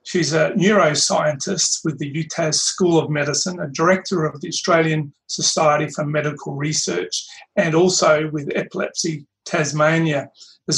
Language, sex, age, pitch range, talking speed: English, male, 40-59, 150-185 Hz, 135 wpm